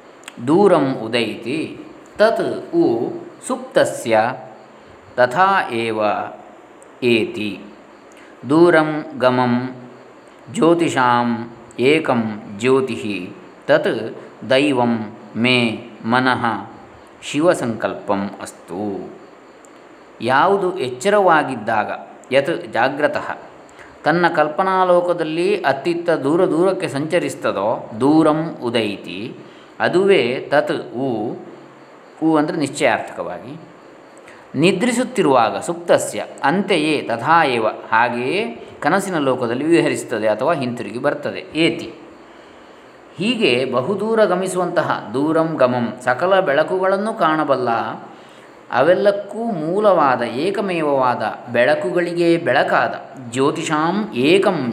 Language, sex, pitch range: Kannada, male, 125-190 Hz